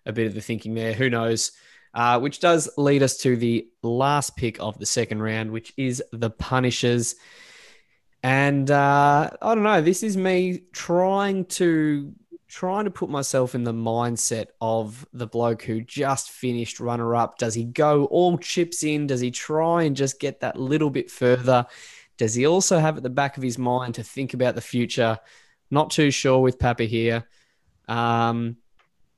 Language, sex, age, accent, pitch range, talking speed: English, male, 20-39, Australian, 115-145 Hz, 180 wpm